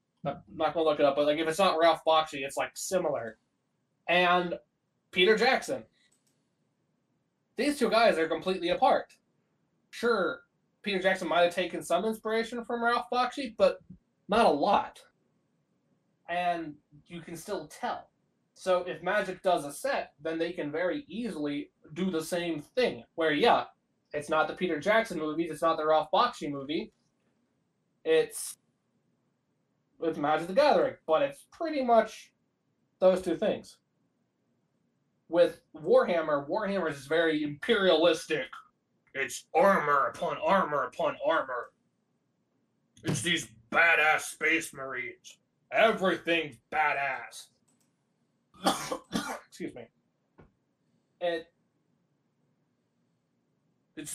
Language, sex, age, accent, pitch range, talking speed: English, male, 20-39, American, 160-220 Hz, 120 wpm